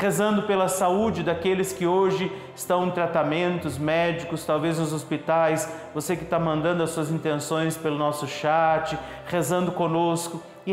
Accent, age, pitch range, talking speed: Brazilian, 40-59, 165-190 Hz, 145 wpm